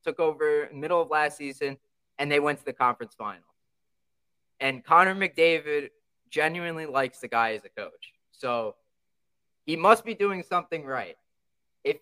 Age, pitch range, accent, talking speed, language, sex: 20-39, 145-230 Hz, American, 165 wpm, English, male